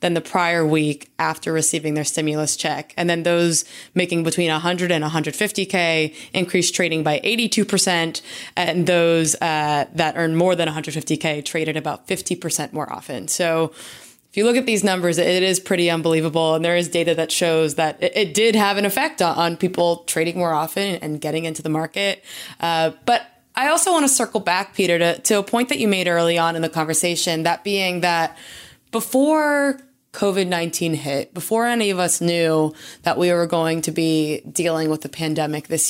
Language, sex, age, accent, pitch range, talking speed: English, female, 20-39, American, 160-190 Hz, 185 wpm